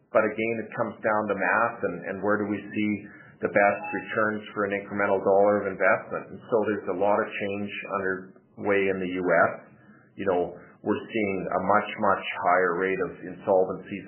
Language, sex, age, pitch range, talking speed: English, male, 40-59, 95-105 Hz, 190 wpm